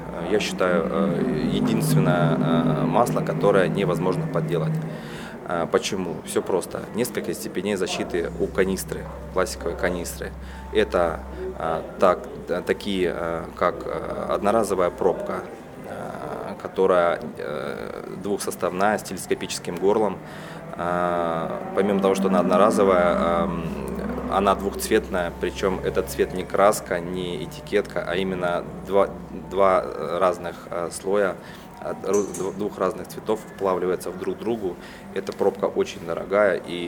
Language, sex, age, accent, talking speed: Russian, male, 20-39, native, 100 wpm